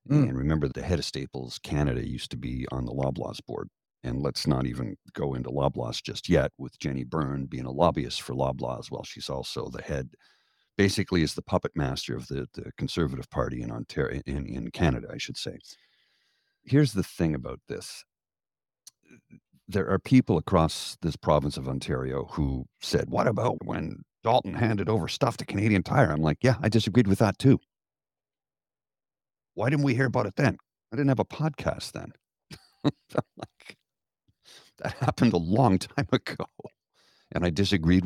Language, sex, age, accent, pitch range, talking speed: English, male, 50-69, American, 70-105 Hz, 170 wpm